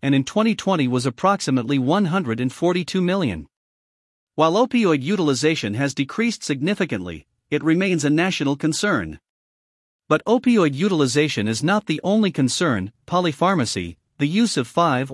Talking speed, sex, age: 125 wpm, male, 50-69